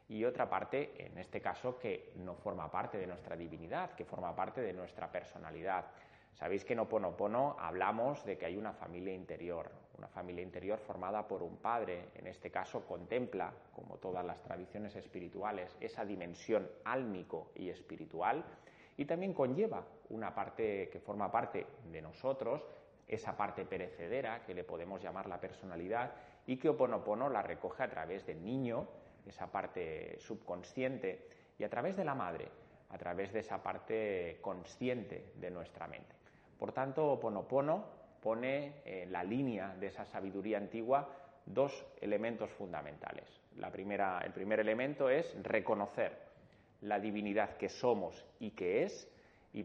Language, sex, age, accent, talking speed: Spanish, male, 30-49, Spanish, 150 wpm